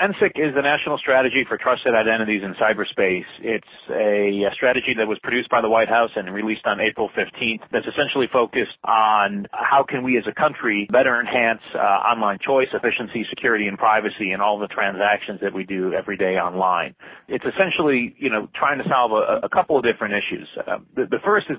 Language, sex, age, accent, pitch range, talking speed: English, male, 30-49, American, 100-115 Hz, 205 wpm